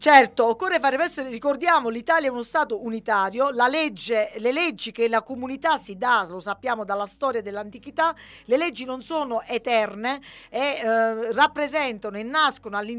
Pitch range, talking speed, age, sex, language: 225-300 Hz, 150 wpm, 40-59, female, Italian